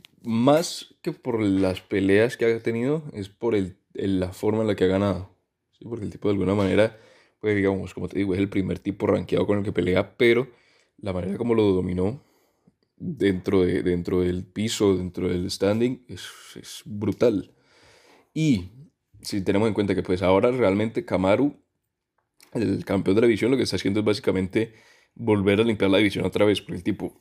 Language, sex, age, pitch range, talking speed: Spanish, male, 10-29, 95-115 Hz, 195 wpm